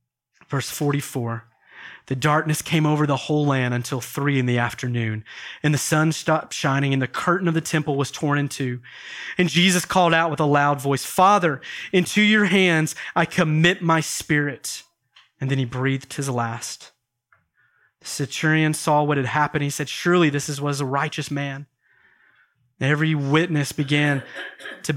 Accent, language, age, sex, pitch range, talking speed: American, English, 30-49, male, 130-155 Hz, 165 wpm